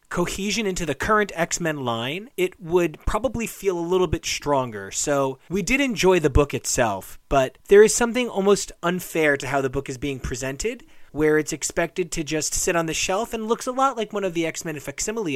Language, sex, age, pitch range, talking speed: English, male, 30-49, 135-205 Hz, 205 wpm